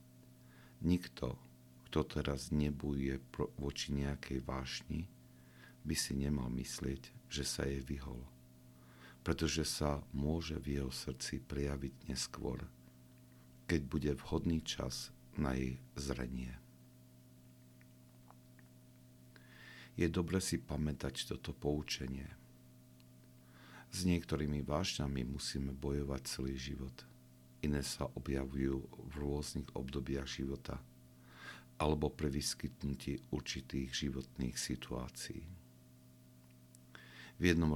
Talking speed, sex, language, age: 90 wpm, male, Slovak, 50-69